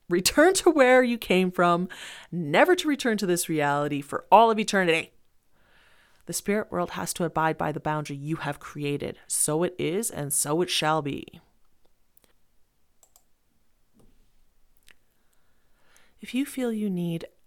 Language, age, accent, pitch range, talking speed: English, 30-49, American, 150-180 Hz, 140 wpm